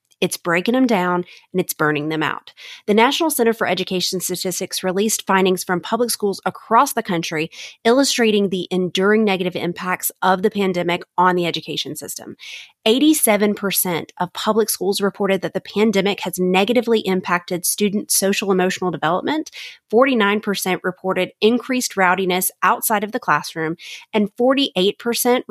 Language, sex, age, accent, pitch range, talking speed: English, female, 30-49, American, 180-220 Hz, 140 wpm